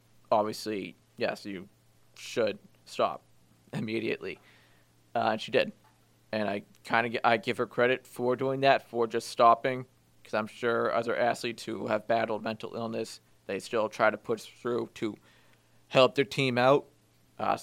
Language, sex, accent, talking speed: English, male, American, 155 wpm